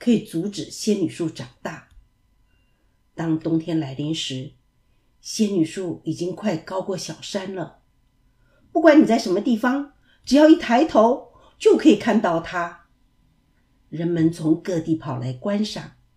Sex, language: female, Chinese